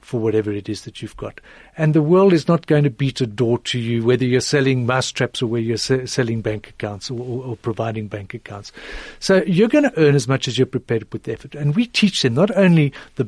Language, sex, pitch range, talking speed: English, male, 125-185 Hz, 260 wpm